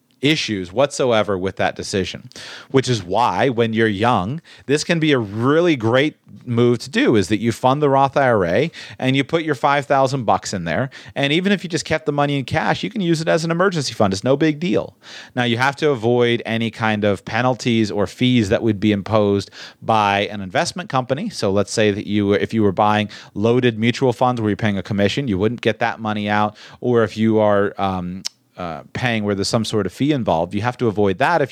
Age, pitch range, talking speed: 30-49, 105-140 Hz, 225 wpm